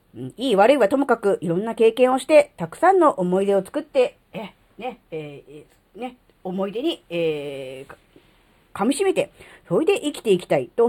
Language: Japanese